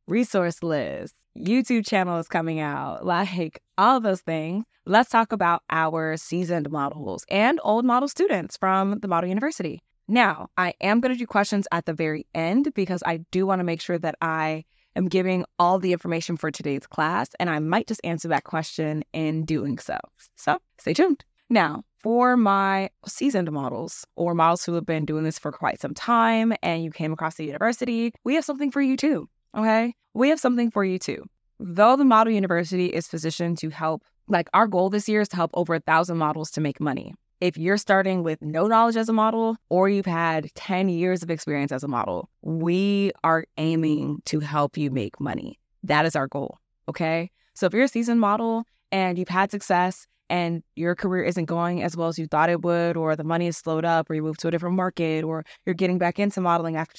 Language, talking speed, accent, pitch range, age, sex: English, 210 wpm, American, 160-205 Hz, 20-39, female